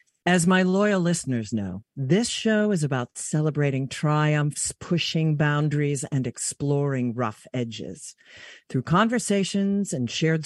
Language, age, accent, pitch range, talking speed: English, 50-69, American, 130-180 Hz, 120 wpm